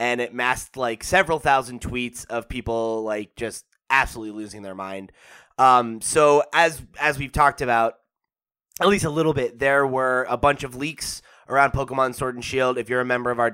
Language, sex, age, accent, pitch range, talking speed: English, male, 20-39, American, 115-140 Hz, 195 wpm